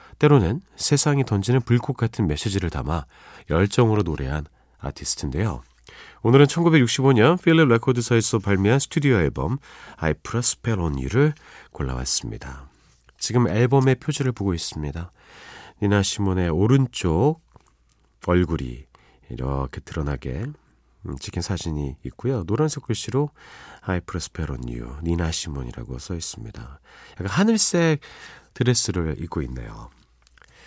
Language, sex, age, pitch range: Korean, male, 40-59, 75-125 Hz